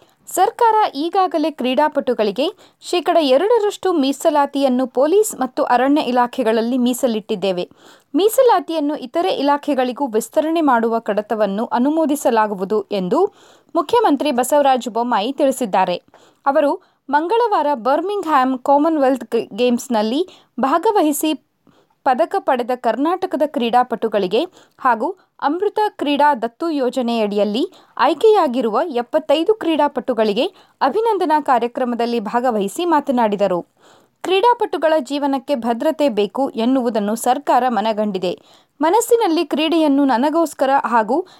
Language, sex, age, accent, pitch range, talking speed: Kannada, female, 20-39, native, 240-330 Hz, 80 wpm